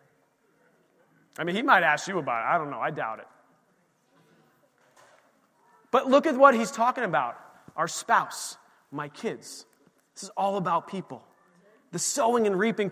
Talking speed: 160 wpm